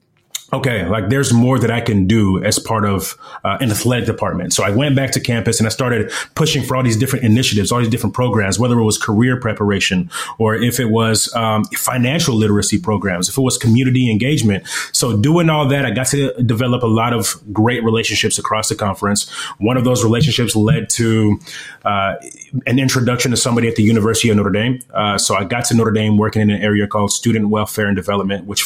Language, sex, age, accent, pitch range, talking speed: English, male, 30-49, American, 105-120 Hz, 215 wpm